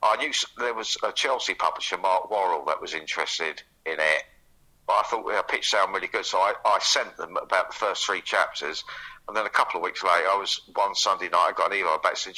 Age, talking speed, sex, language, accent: 50-69, 245 wpm, male, English, British